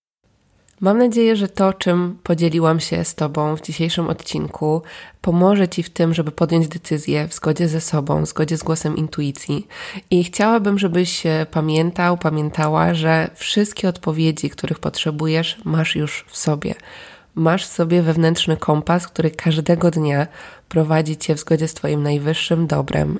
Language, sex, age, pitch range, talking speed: Polish, female, 20-39, 155-175 Hz, 150 wpm